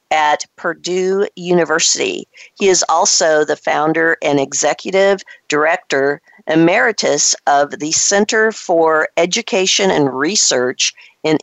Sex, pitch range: female, 145-195 Hz